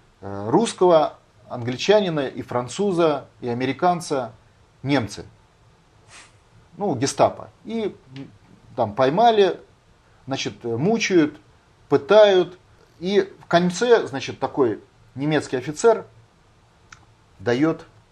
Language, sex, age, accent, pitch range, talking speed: Russian, male, 30-49, native, 110-150 Hz, 75 wpm